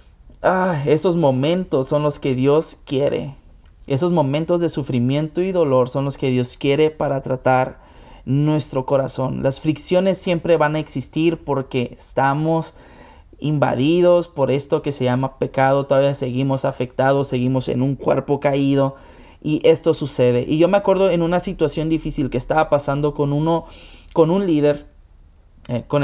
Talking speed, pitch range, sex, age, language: 150 wpm, 130-160 Hz, male, 20-39, Spanish